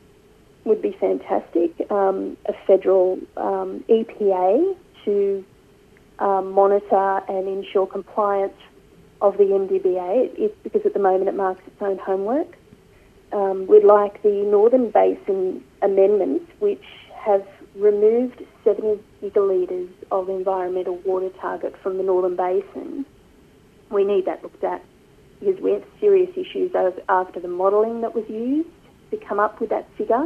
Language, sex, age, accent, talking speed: English, female, 30-49, Australian, 135 wpm